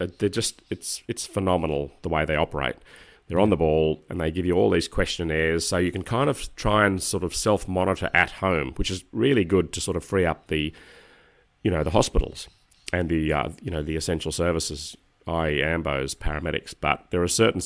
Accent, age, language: Australian, 30-49, English